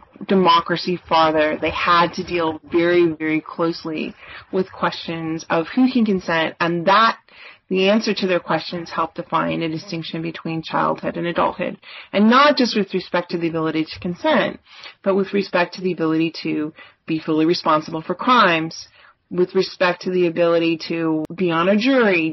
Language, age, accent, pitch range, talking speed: English, 30-49, American, 170-195 Hz, 165 wpm